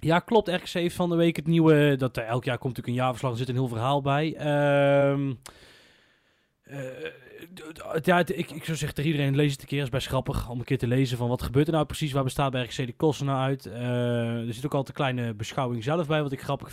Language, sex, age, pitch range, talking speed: Dutch, male, 20-39, 125-155 Hz, 265 wpm